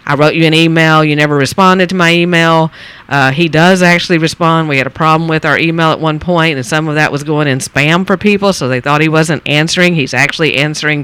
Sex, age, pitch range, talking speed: female, 50-69, 140-170 Hz, 245 wpm